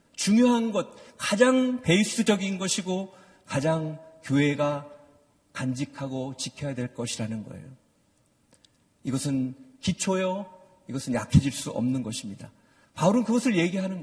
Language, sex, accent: Korean, male, native